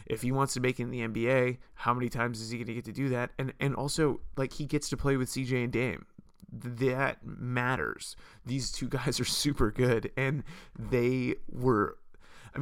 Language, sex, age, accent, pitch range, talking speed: English, male, 20-39, American, 110-135 Hz, 210 wpm